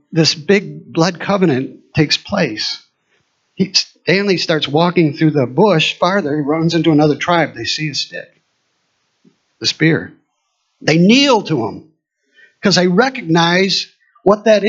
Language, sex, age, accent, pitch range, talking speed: English, male, 50-69, American, 150-215 Hz, 135 wpm